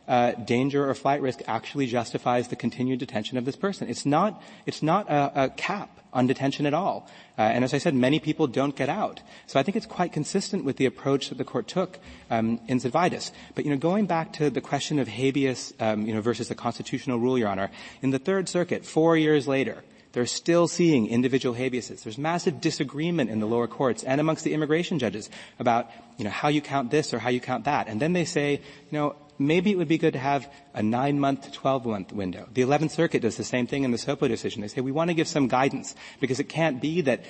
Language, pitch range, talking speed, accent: English, 120-150 Hz, 235 wpm, American